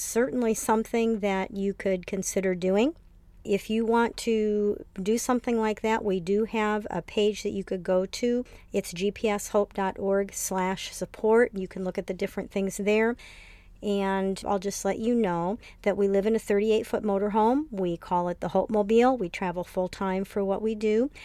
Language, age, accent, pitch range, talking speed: English, 50-69, American, 185-215 Hz, 175 wpm